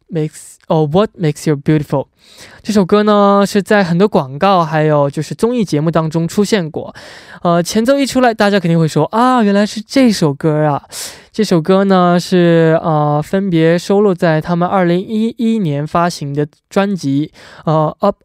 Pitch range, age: 155-205 Hz, 20-39